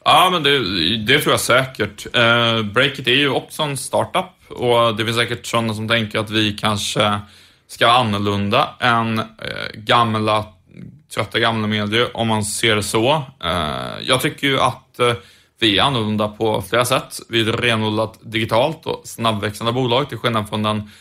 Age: 30-49